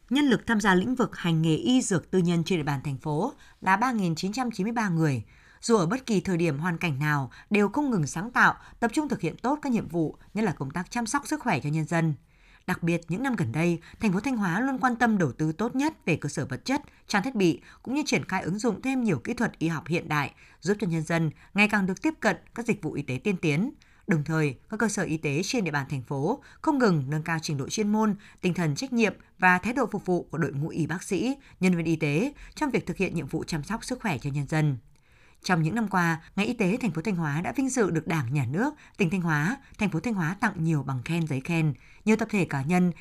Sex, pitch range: female, 155-225 Hz